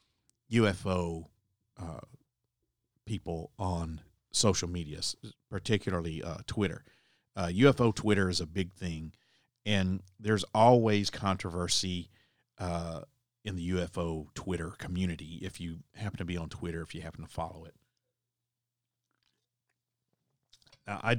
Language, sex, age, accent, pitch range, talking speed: English, male, 50-69, American, 90-120 Hz, 115 wpm